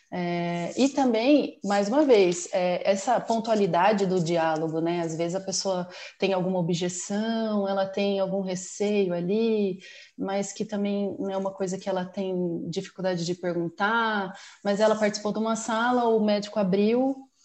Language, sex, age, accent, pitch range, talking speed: Portuguese, female, 30-49, Brazilian, 180-220 Hz, 160 wpm